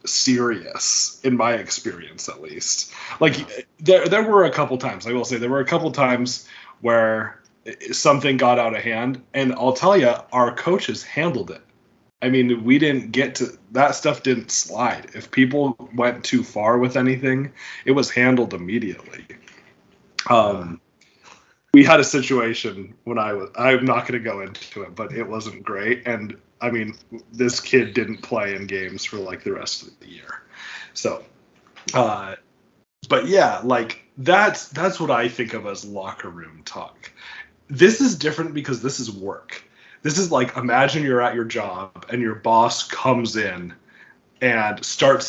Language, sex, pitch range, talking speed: English, male, 110-135 Hz, 170 wpm